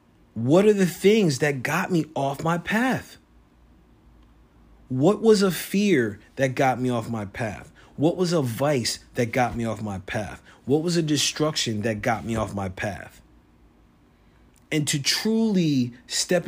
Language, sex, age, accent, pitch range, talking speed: English, male, 30-49, American, 115-165 Hz, 160 wpm